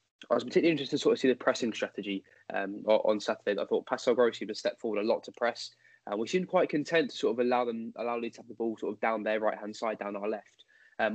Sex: male